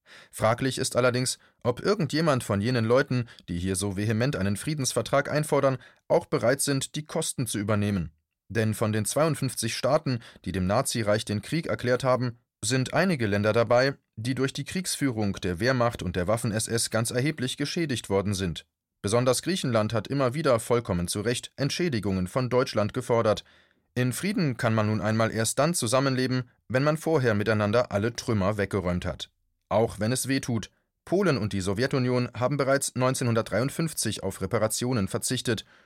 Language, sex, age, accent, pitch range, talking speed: German, male, 30-49, German, 105-135 Hz, 160 wpm